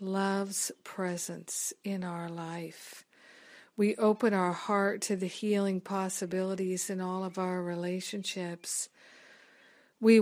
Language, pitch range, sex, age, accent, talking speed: English, 185-215 Hz, female, 50-69, American, 110 wpm